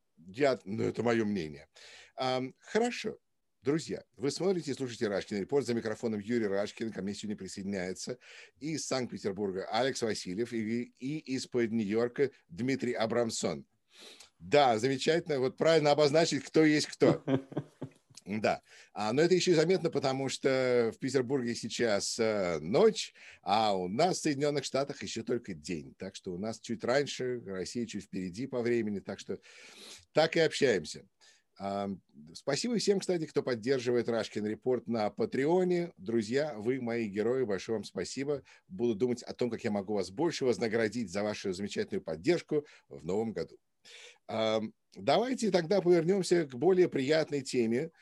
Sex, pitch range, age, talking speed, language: male, 115-150 Hz, 50-69, 150 wpm, English